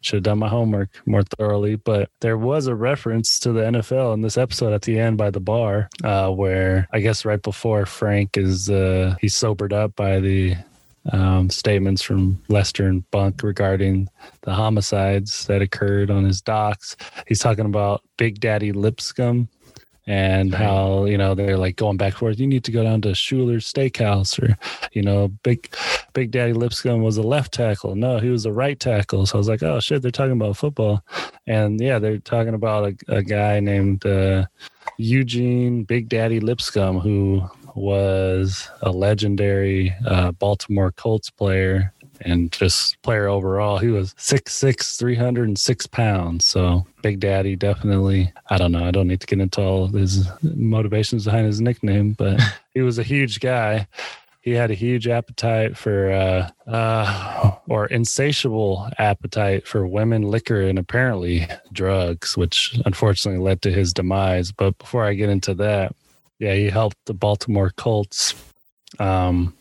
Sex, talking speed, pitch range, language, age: male, 170 wpm, 95-115 Hz, English, 20-39